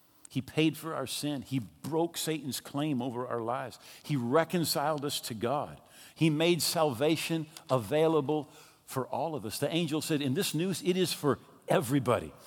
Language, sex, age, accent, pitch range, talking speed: English, male, 50-69, American, 120-170 Hz, 170 wpm